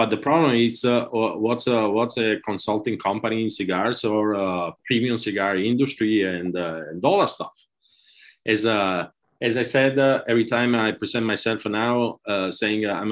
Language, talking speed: English, 185 wpm